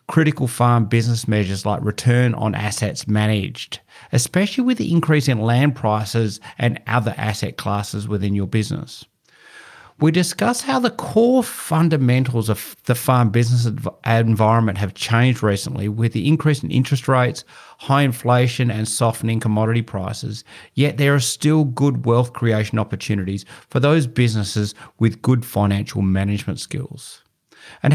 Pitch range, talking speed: 110-135 Hz, 140 wpm